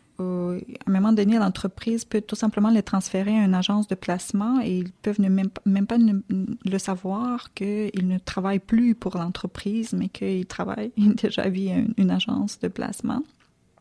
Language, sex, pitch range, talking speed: French, female, 185-210 Hz, 190 wpm